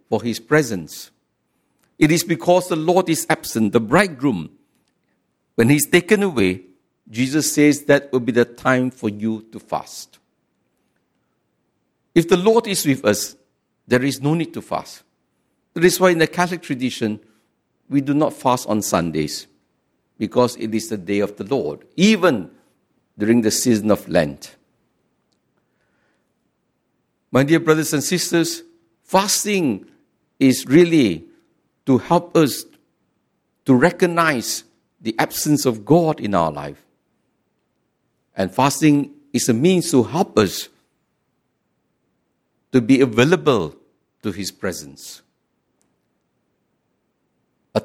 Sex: male